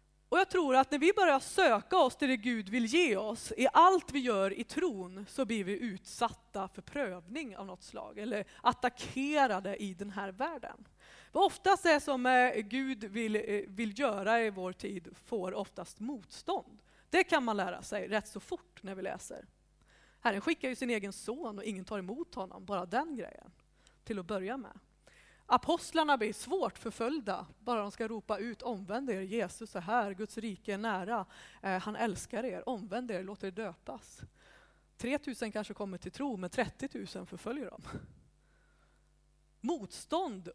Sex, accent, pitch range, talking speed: female, native, 205-270 Hz, 175 wpm